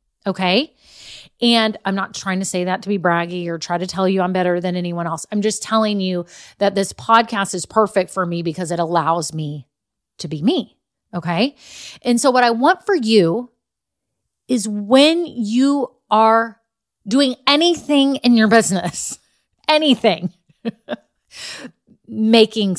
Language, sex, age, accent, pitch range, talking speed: English, female, 30-49, American, 180-240 Hz, 155 wpm